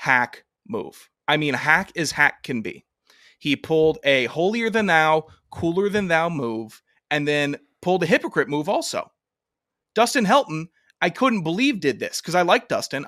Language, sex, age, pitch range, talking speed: English, male, 30-49, 145-200 Hz, 170 wpm